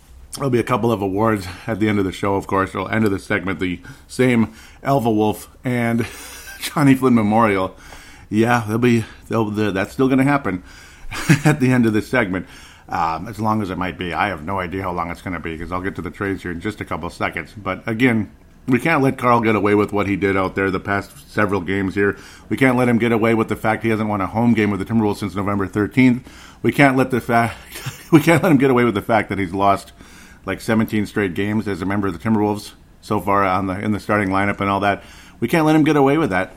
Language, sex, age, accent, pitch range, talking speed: English, male, 40-59, American, 95-115 Hz, 260 wpm